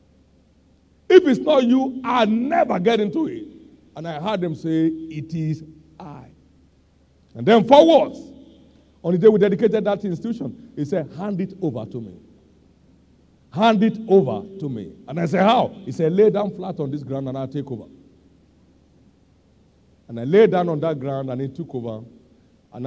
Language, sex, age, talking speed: English, male, 50-69, 175 wpm